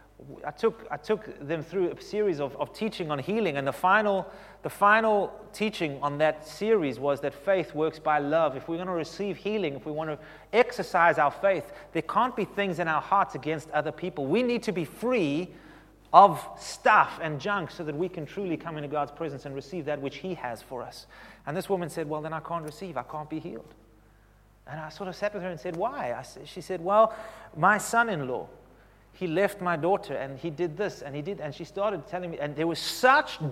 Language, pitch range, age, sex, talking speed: English, 140-190 Hz, 30-49, male, 225 wpm